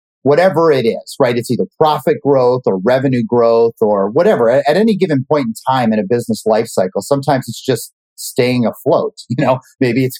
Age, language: 40-59, English